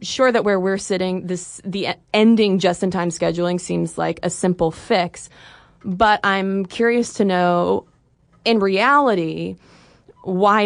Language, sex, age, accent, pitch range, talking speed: English, female, 20-39, American, 175-210 Hz, 130 wpm